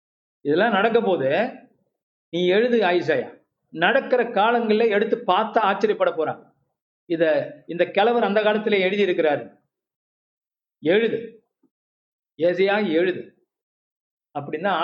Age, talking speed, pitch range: 50-69, 90 wpm, 175-220 Hz